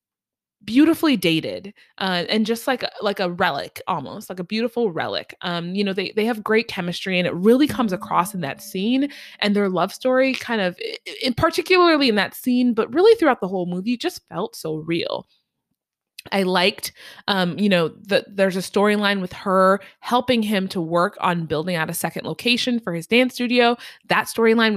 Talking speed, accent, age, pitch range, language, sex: 190 wpm, American, 20-39, 175-230 Hz, English, female